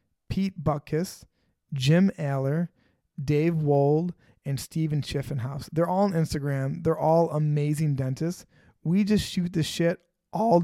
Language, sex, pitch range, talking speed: English, male, 140-170 Hz, 130 wpm